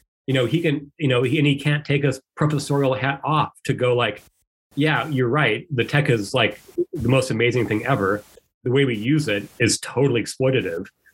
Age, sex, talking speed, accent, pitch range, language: 30-49, male, 205 wpm, American, 120-145 Hz, English